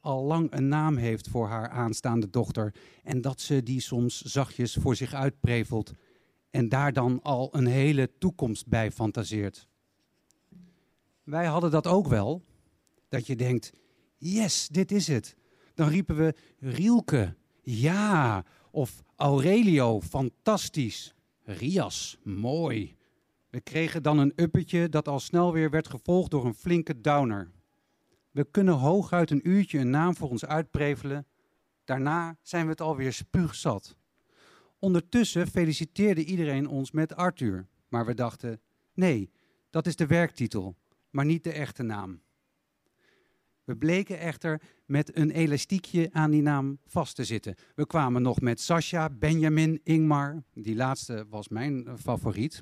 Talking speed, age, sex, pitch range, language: 140 wpm, 50-69, male, 120-160 Hz, Dutch